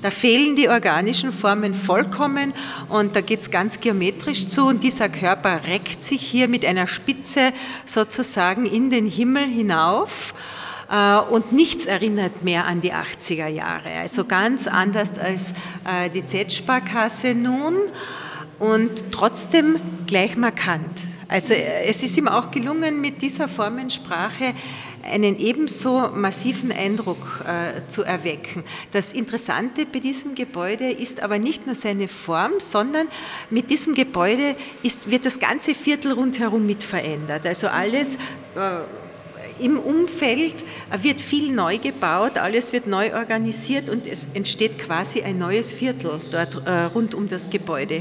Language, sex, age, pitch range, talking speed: German, female, 40-59, 185-250 Hz, 135 wpm